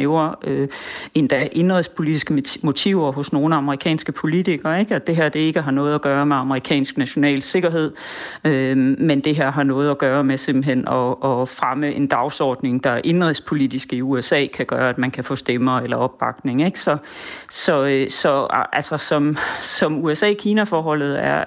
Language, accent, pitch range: Danish, native, 140-180 Hz